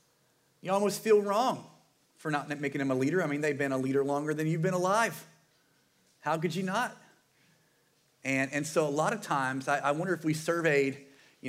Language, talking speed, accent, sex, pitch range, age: English, 205 wpm, American, male, 130-155 Hz, 40-59